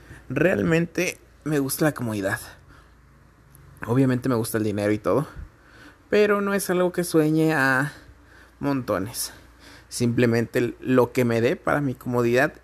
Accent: Mexican